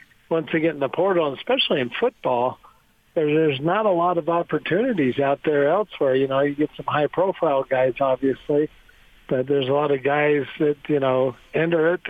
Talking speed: 185 wpm